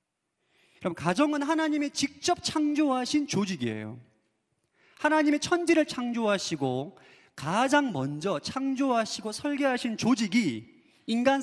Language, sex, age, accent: Korean, male, 30-49, native